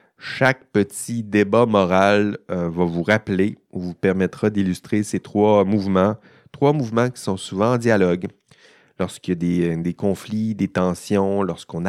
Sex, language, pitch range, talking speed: male, French, 90-115 Hz, 150 wpm